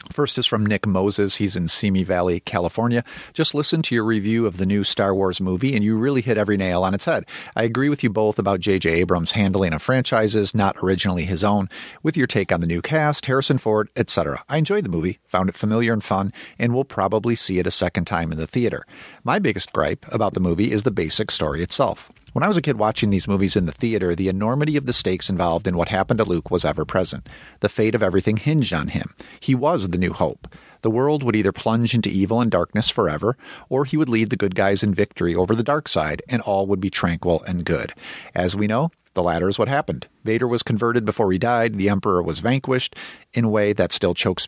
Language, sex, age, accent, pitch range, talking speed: English, male, 40-59, American, 95-120 Hz, 235 wpm